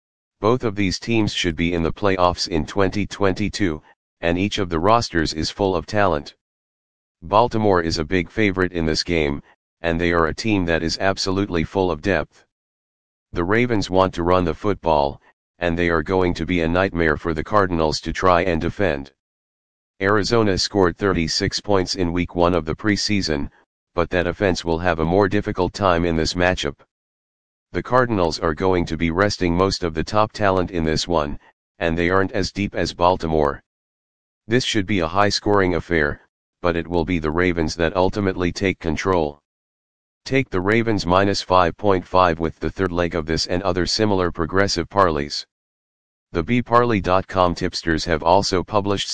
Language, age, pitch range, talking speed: English, 40-59, 85-100 Hz, 175 wpm